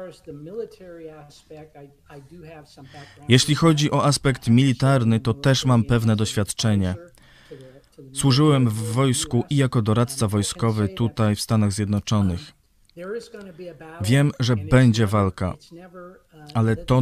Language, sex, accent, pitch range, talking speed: Polish, male, native, 110-145 Hz, 95 wpm